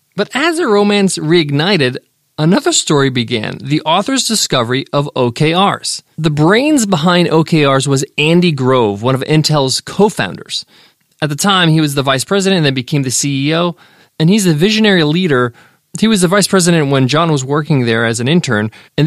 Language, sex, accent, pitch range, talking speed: English, male, American, 140-190 Hz, 175 wpm